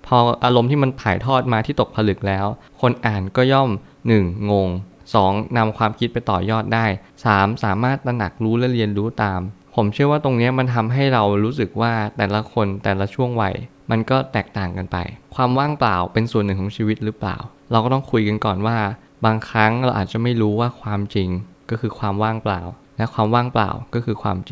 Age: 20-39